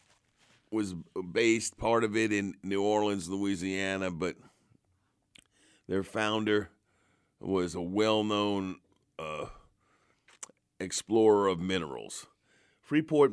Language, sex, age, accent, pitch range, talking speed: English, male, 50-69, American, 90-110 Hz, 90 wpm